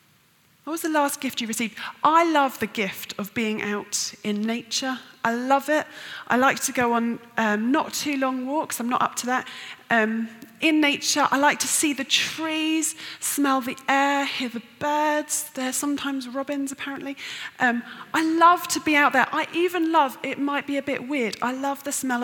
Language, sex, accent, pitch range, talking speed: English, female, British, 225-295 Hz, 195 wpm